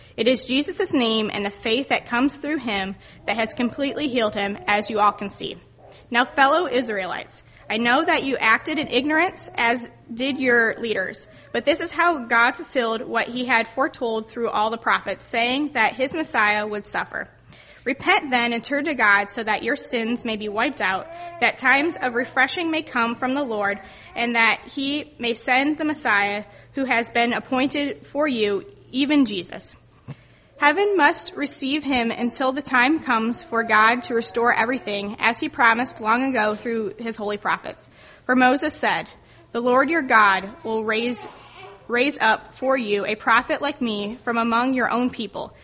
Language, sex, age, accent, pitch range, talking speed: English, female, 20-39, American, 220-275 Hz, 180 wpm